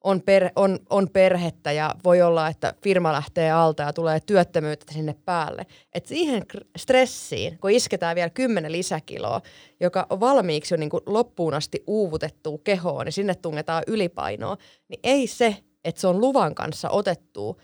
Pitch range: 160-200 Hz